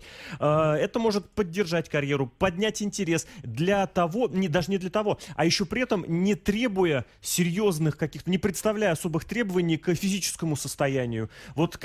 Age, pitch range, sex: 30-49, 145-195 Hz, male